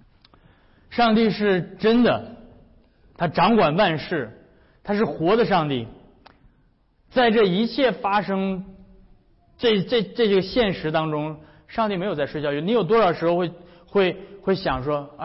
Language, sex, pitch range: Chinese, male, 135-195 Hz